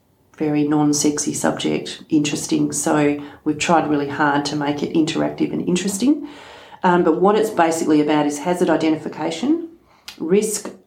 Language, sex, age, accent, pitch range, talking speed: English, female, 40-59, Australian, 145-170 Hz, 140 wpm